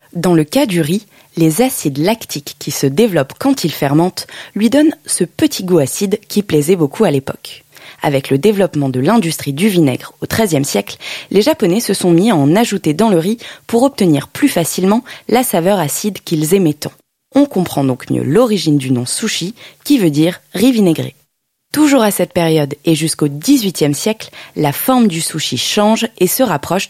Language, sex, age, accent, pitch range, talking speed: French, female, 20-39, French, 150-220 Hz, 195 wpm